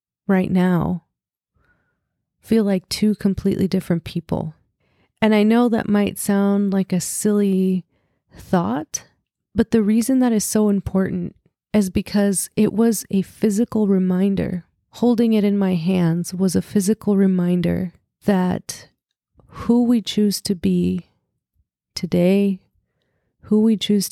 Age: 30-49